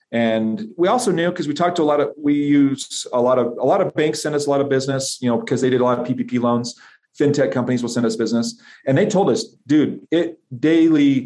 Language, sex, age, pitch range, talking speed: English, male, 40-59, 120-155 Hz, 260 wpm